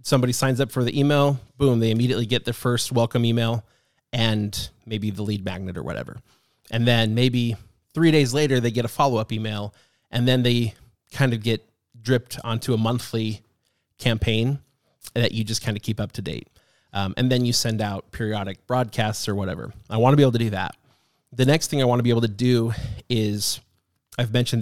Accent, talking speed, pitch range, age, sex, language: American, 200 wpm, 110-130 Hz, 30-49, male, English